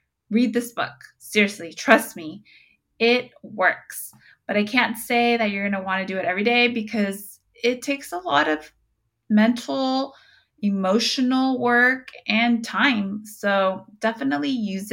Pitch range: 195-235 Hz